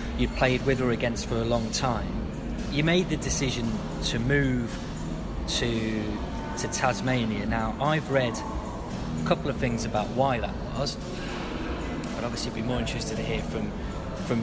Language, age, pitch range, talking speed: English, 20-39, 110-130 Hz, 160 wpm